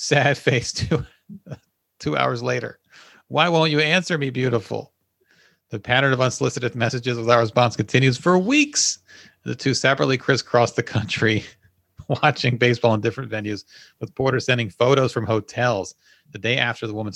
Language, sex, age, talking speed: English, male, 40-59, 155 wpm